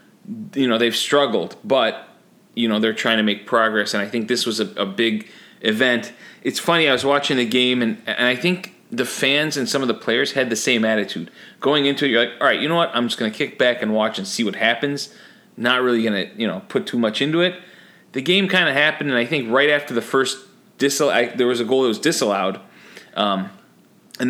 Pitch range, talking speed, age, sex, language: 110-140 Hz, 240 wpm, 30-49, male, English